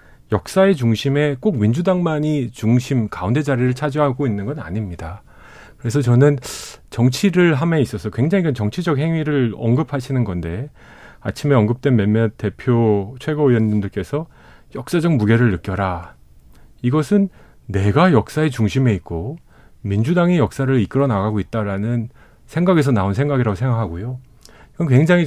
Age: 40-59